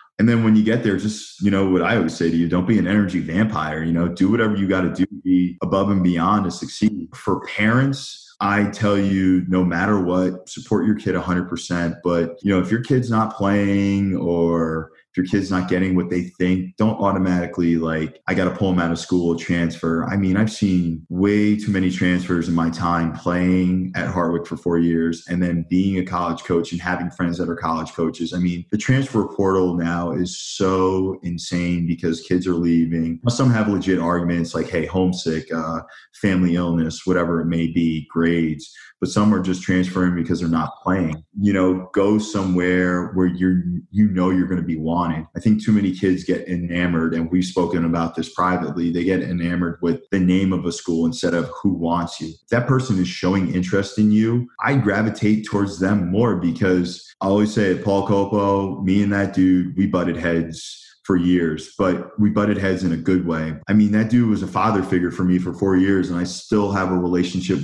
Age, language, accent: 20-39, English, American